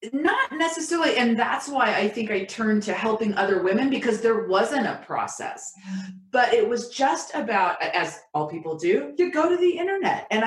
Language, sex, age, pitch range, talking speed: English, female, 30-49, 200-270 Hz, 190 wpm